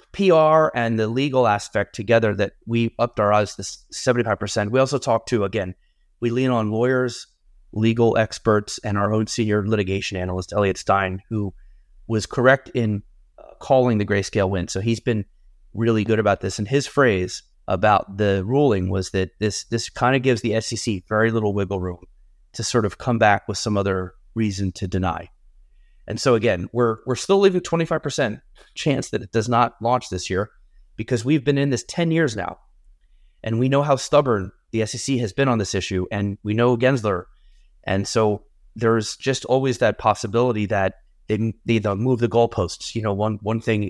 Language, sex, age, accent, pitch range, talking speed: English, male, 30-49, American, 100-120 Hz, 185 wpm